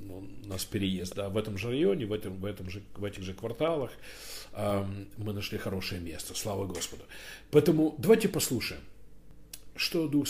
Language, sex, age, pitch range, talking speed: Russian, male, 50-69, 105-140 Hz, 170 wpm